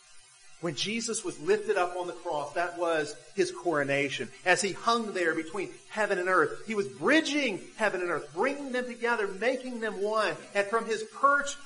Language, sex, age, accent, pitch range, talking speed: English, male, 40-59, American, 140-225 Hz, 185 wpm